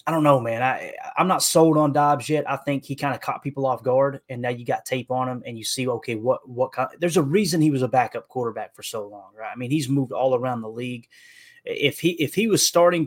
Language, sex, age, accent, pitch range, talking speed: English, male, 20-39, American, 120-145 Hz, 280 wpm